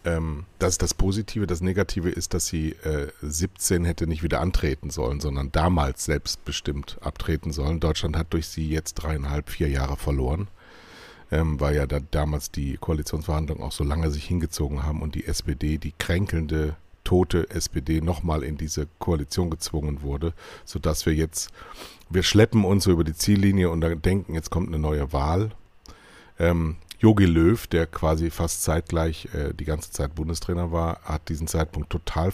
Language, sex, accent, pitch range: German, male, German, 75-90 Hz